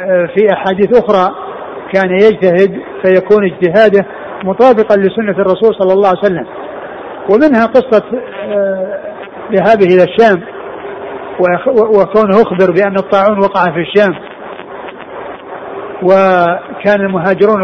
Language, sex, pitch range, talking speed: Arabic, male, 190-215 Hz, 95 wpm